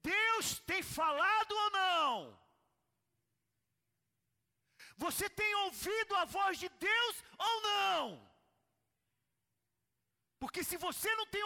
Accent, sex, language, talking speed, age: Brazilian, male, Portuguese, 95 wpm, 40-59